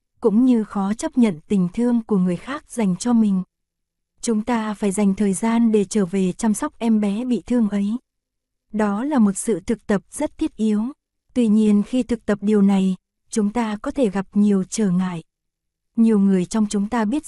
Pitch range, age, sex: 200-235 Hz, 20-39, female